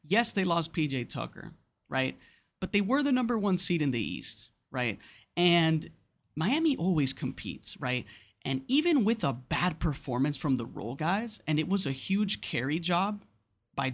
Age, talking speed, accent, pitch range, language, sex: 30-49, 170 wpm, American, 130-195 Hz, English, male